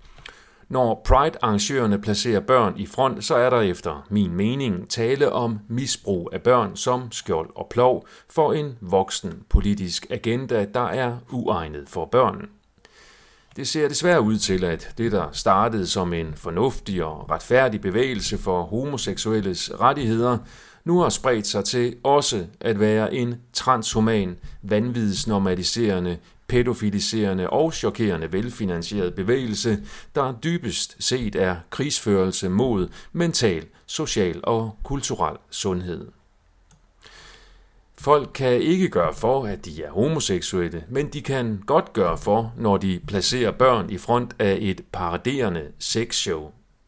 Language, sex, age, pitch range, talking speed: Danish, male, 40-59, 95-125 Hz, 130 wpm